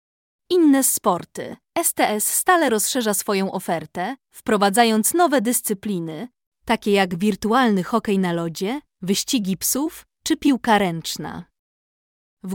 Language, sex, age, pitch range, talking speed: Polish, female, 20-39, 190-240 Hz, 105 wpm